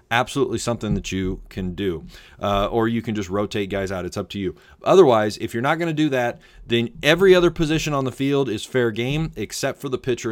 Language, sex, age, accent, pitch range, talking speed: English, male, 30-49, American, 100-130 Hz, 235 wpm